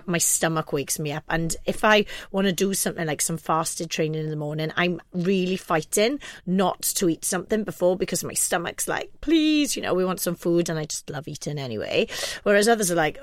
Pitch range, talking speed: 165-185 Hz, 220 wpm